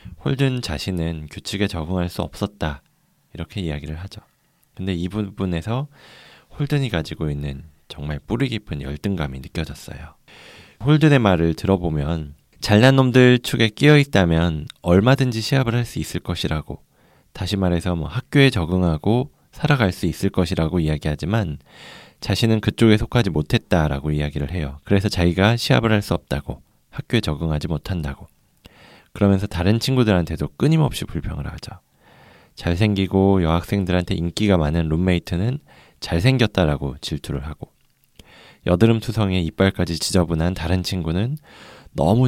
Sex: male